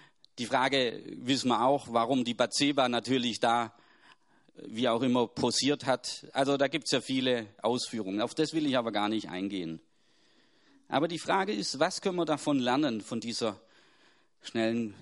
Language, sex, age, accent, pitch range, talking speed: German, male, 40-59, German, 120-160 Hz, 170 wpm